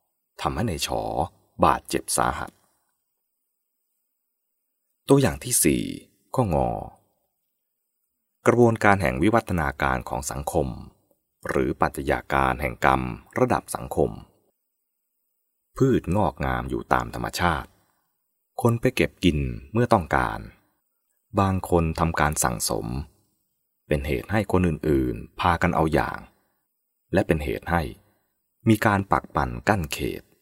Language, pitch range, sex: English, 70-105 Hz, male